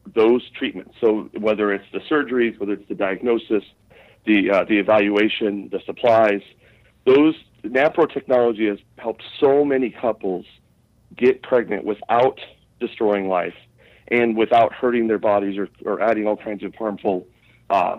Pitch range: 105-125 Hz